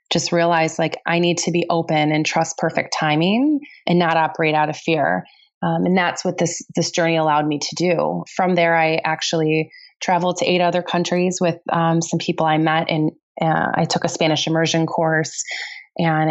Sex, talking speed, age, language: female, 195 wpm, 20-39, English